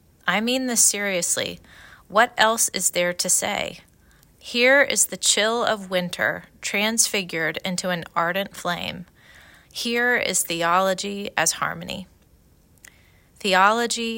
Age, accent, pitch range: 30-49, American, 170-210 Hz